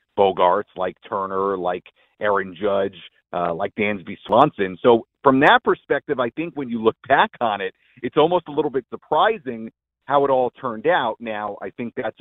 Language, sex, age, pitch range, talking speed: English, male, 40-59, 95-125 Hz, 180 wpm